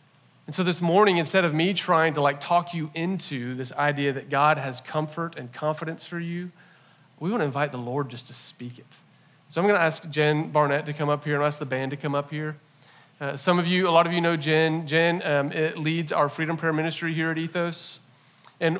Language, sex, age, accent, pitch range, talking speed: English, male, 40-59, American, 140-175 Hz, 235 wpm